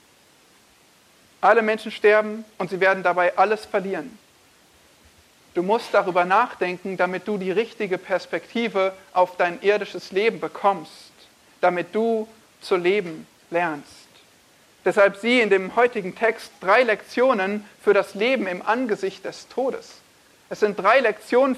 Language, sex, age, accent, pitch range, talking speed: German, male, 50-69, German, 180-225 Hz, 130 wpm